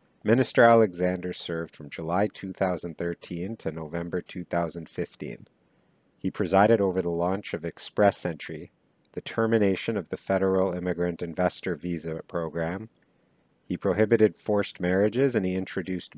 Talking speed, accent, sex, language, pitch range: 120 wpm, American, male, English, 90-100 Hz